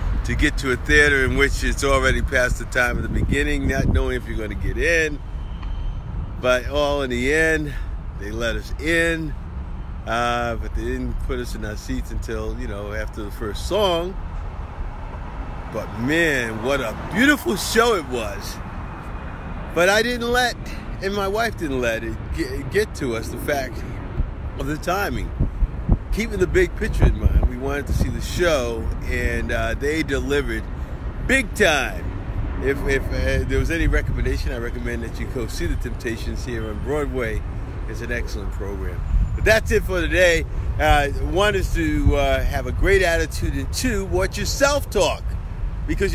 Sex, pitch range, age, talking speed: male, 85-135 Hz, 50-69, 175 wpm